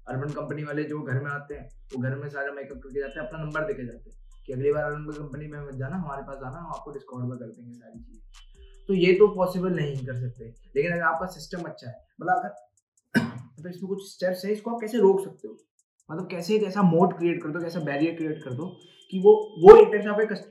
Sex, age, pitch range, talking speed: male, 20-39, 130-170 Hz, 165 wpm